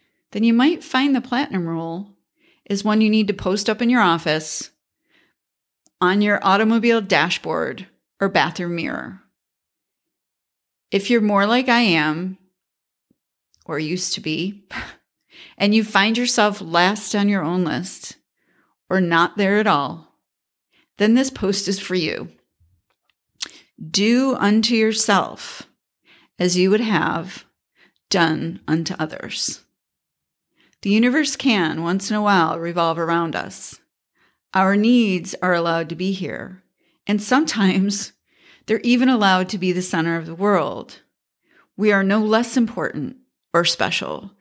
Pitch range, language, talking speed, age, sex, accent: 175-220 Hz, English, 135 wpm, 40-59, female, American